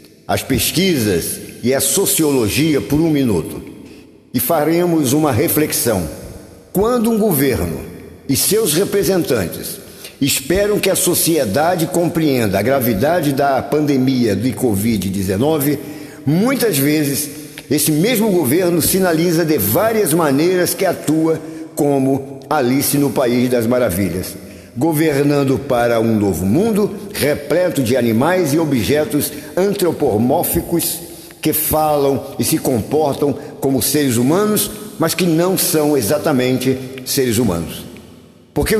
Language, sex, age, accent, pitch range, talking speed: Portuguese, male, 50-69, Brazilian, 130-170 Hz, 115 wpm